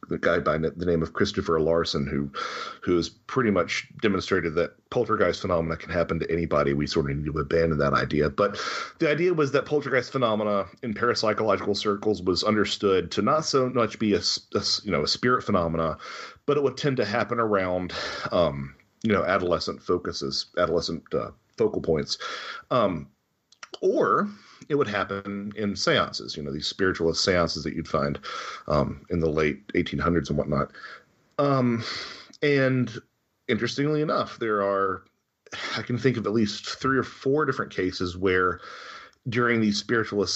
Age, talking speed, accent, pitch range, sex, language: 40-59, 170 wpm, American, 85-115 Hz, male, English